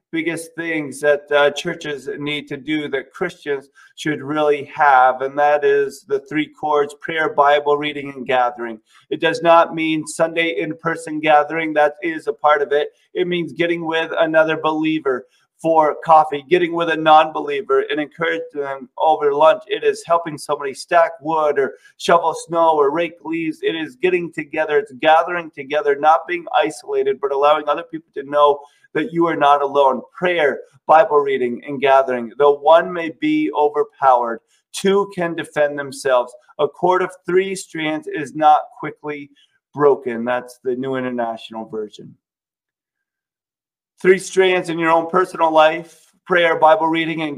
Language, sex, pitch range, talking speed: English, male, 145-185 Hz, 160 wpm